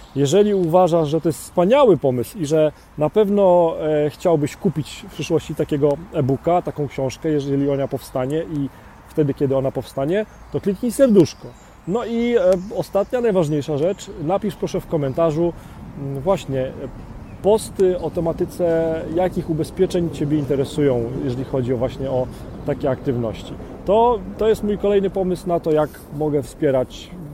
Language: Polish